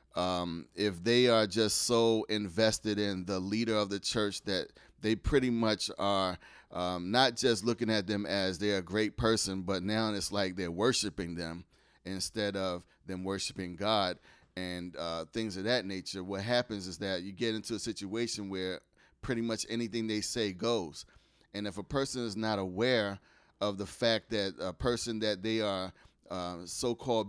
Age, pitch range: 30-49, 95-115 Hz